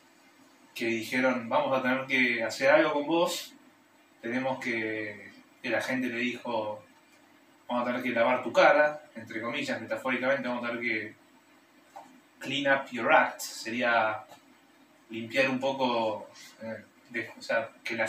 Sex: male